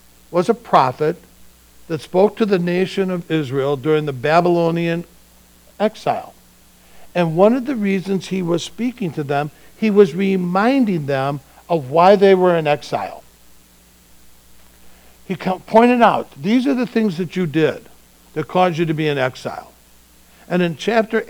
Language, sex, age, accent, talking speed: English, male, 60-79, American, 150 wpm